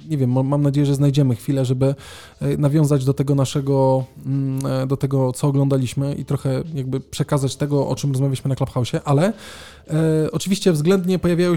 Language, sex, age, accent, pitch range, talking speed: Polish, male, 20-39, native, 135-165 Hz, 160 wpm